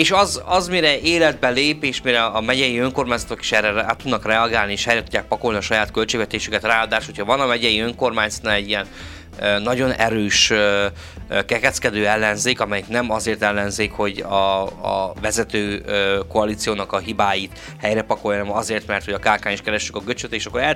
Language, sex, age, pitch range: Hungarian, male, 20-39, 105-125 Hz